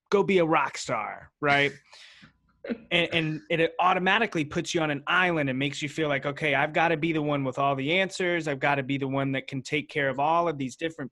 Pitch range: 130-170 Hz